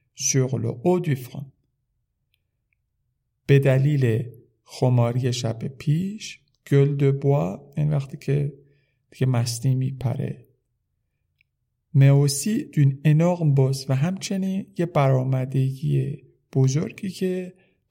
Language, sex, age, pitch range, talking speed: Persian, male, 50-69, 125-145 Hz, 75 wpm